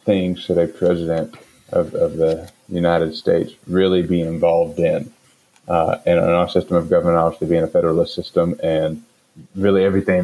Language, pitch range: English, 85-105 Hz